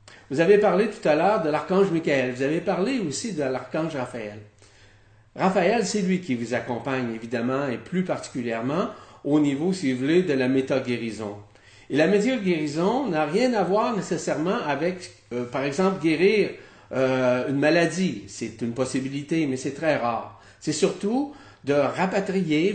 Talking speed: 160 wpm